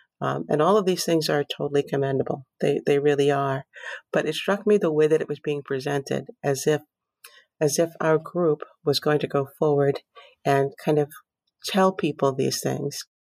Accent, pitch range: American, 145-165 Hz